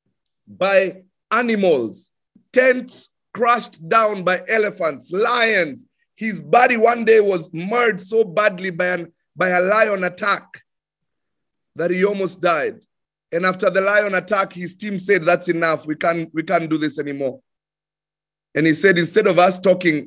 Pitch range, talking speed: 155-190 Hz, 145 wpm